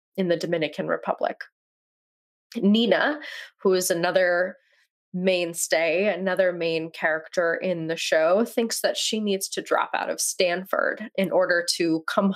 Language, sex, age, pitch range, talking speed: English, female, 20-39, 170-215 Hz, 135 wpm